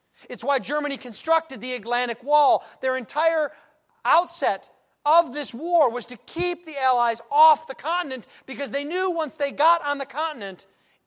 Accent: American